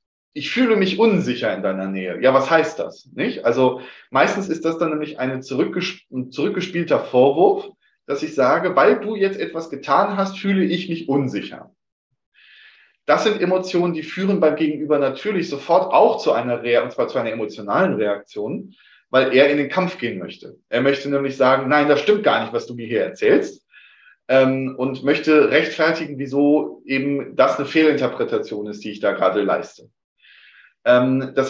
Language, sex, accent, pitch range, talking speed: German, male, German, 140-185 Hz, 170 wpm